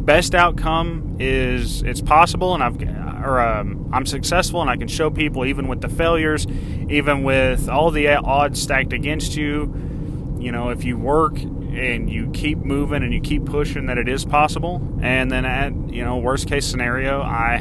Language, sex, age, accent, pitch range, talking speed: English, male, 30-49, American, 120-145 Hz, 185 wpm